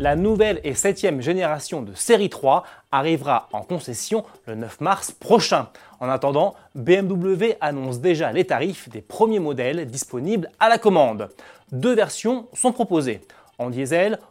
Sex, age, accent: male, 20-39, French